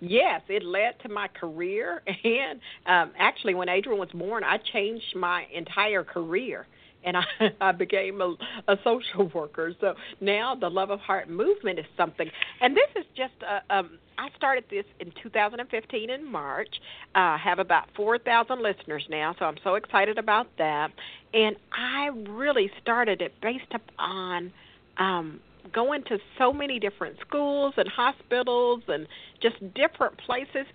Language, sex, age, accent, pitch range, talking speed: English, female, 50-69, American, 180-250 Hz, 160 wpm